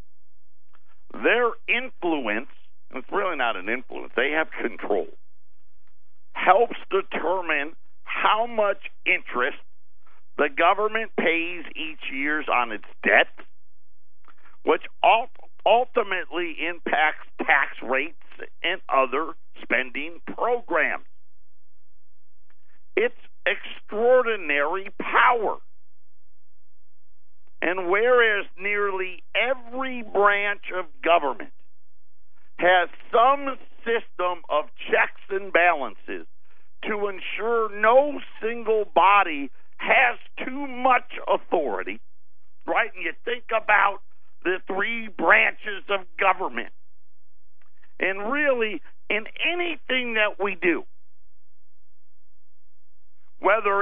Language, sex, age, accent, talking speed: English, male, 50-69, American, 85 wpm